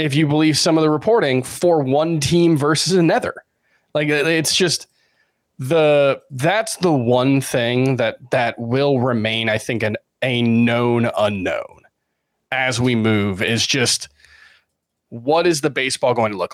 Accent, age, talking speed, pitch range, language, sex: American, 20-39, 150 wpm, 120-165 Hz, English, male